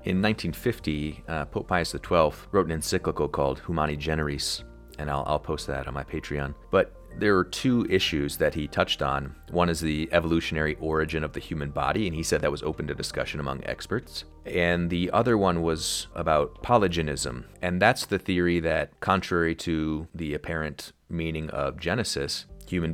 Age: 30-49